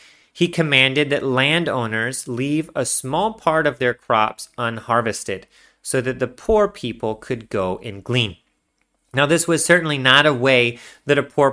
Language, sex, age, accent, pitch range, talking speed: English, male, 30-49, American, 120-165 Hz, 160 wpm